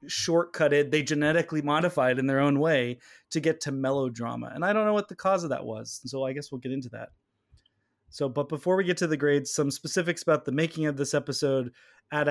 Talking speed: 225 wpm